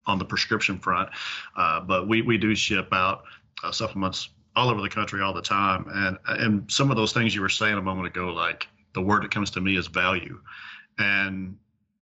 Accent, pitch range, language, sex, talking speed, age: American, 95-110 Hz, English, male, 210 wpm, 40-59